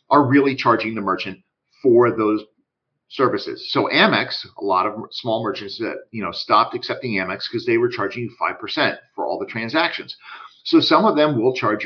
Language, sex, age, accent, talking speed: English, male, 50-69, American, 180 wpm